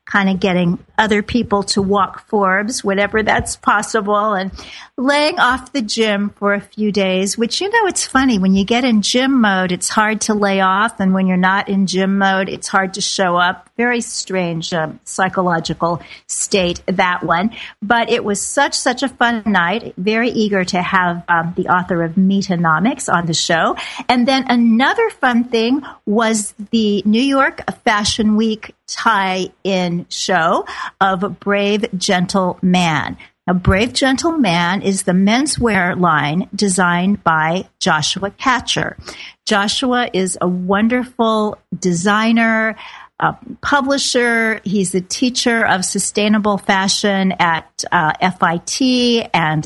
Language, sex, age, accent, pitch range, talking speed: English, female, 50-69, American, 185-230 Hz, 145 wpm